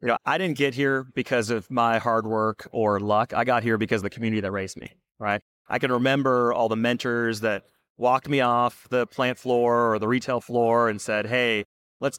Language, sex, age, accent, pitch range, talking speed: English, male, 30-49, American, 110-145 Hz, 220 wpm